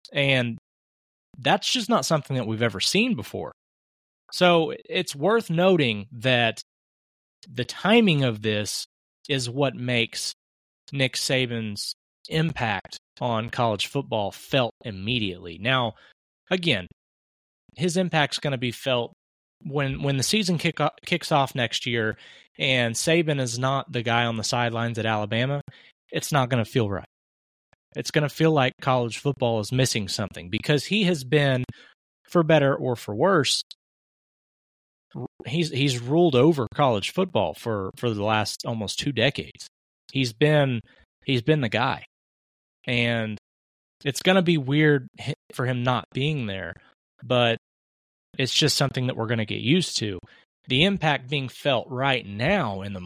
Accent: American